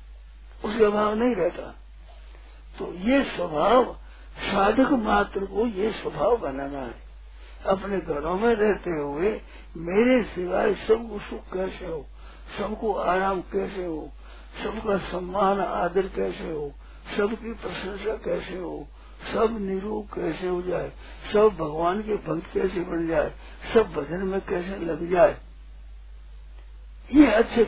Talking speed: 125 wpm